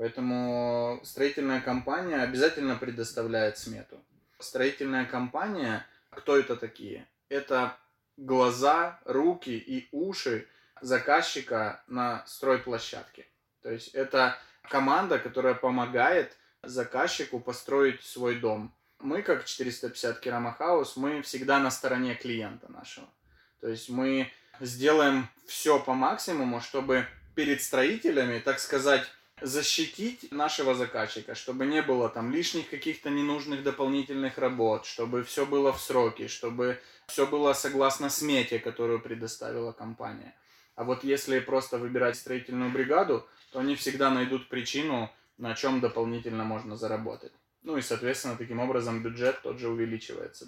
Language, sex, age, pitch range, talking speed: Russian, male, 20-39, 120-140 Hz, 120 wpm